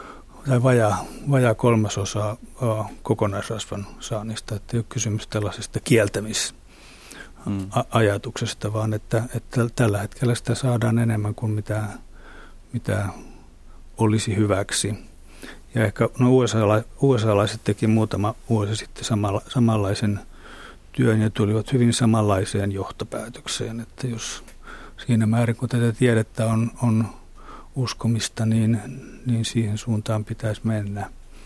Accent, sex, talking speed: native, male, 110 wpm